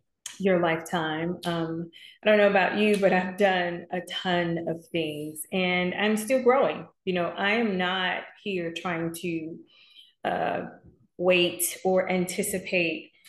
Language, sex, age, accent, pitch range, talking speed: English, female, 30-49, American, 170-210 Hz, 140 wpm